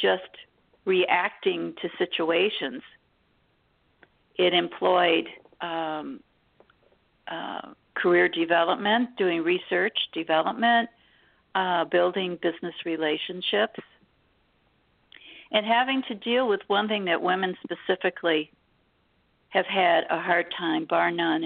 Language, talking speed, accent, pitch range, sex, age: English, 95 wpm, American, 175-230 Hz, female, 60-79